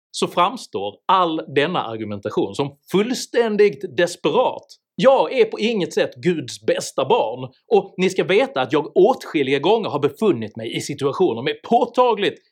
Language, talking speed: Swedish, 150 wpm